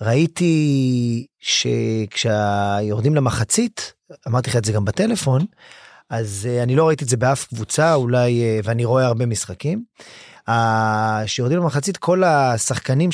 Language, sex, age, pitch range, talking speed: Hebrew, male, 30-49, 125-185 Hz, 120 wpm